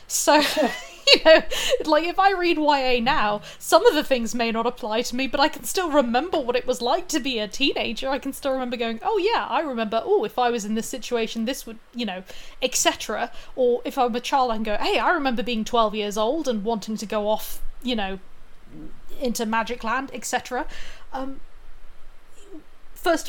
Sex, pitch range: female, 225-270 Hz